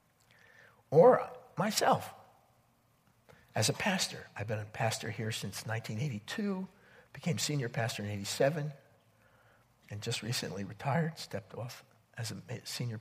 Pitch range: 110-145 Hz